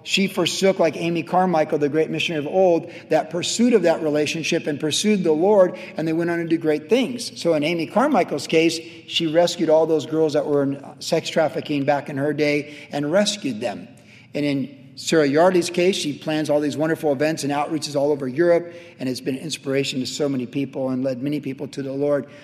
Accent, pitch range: American, 135-160 Hz